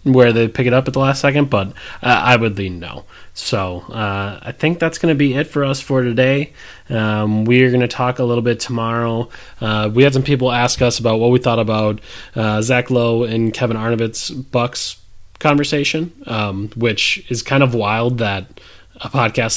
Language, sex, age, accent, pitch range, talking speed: English, male, 20-39, American, 110-130 Hz, 205 wpm